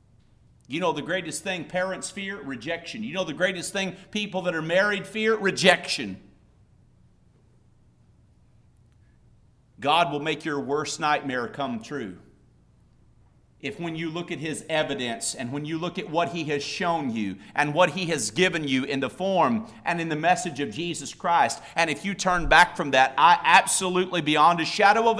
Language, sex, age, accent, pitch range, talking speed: English, male, 50-69, American, 160-210 Hz, 175 wpm